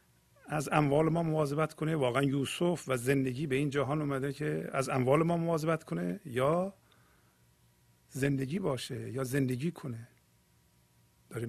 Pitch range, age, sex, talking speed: 105-140 Hz, 50-69, male, 135 wpm